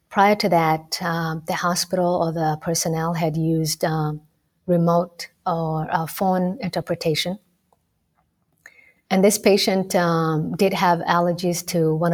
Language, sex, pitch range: English, female, 165-185 Hz